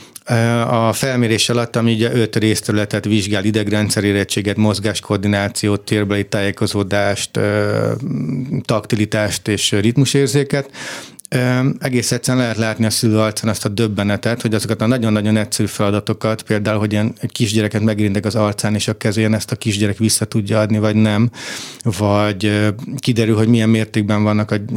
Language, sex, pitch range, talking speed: Hungarian, male, 105-120 Hz, 140 wpm